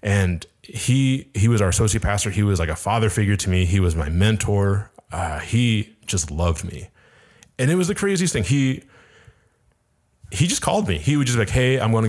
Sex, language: male, English